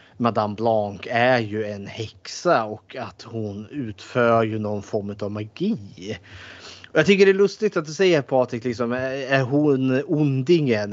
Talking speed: 150 wpm